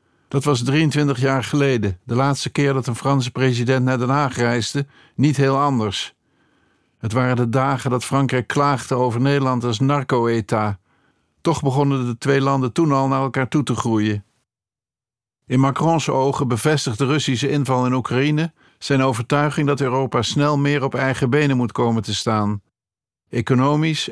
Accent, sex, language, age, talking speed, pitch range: Dutch, male, Dutch, 50-69, 160 wpm, 120-140 Hz